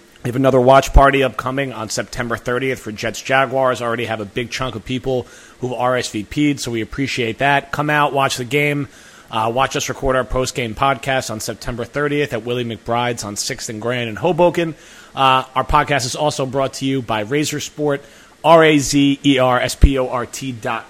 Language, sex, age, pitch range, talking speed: English, male, 30-49, 115-145 Hz, 175 wpm